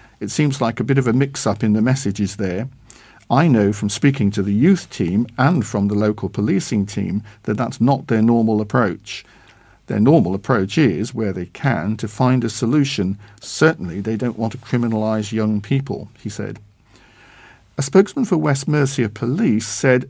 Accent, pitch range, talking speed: British, 105-130 Hz, 180 wpm